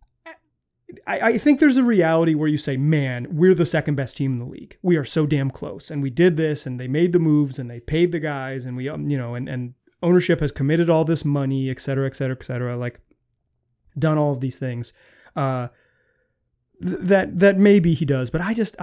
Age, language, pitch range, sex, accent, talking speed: 30-49, English, 140-180 Hz, male, American, 230 wpm